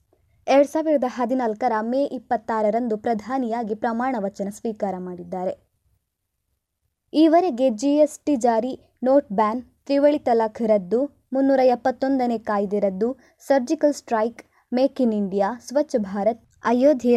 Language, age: Kannada, 20-39